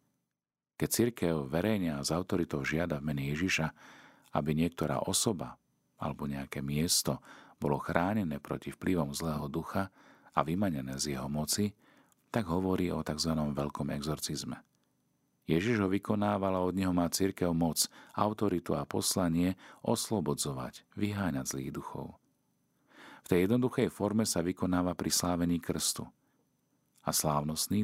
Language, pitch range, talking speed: Slovak, 75-90 Hz, 125 wpm